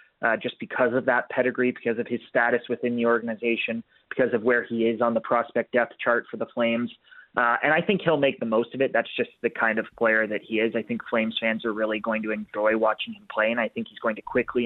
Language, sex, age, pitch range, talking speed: English, male, 20-39, 115-135 Hz, 260 wpm